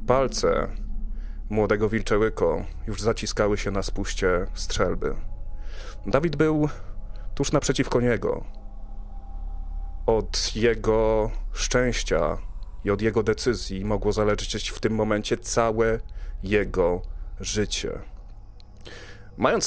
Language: Polish